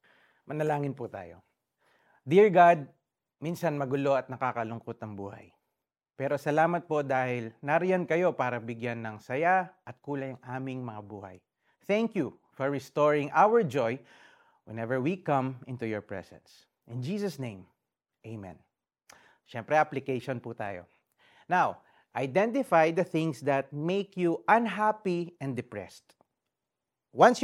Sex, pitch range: male, 120-180 Hz